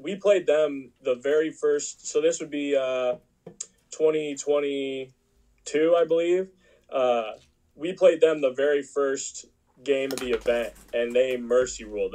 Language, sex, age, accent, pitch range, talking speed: English, male, 10-29, American, 115-160 Hz, 140 wpm